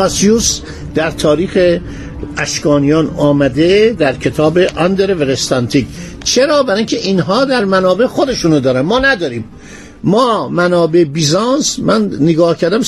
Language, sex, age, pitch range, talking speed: Persian, male, 50-69, 150-195 Hz, 110 wpm